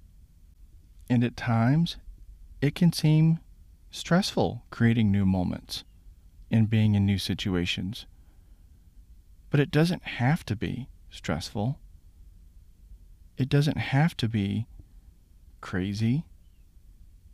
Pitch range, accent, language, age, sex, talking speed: 85-140 Hz, American, English, 40-59, male, 95 wpm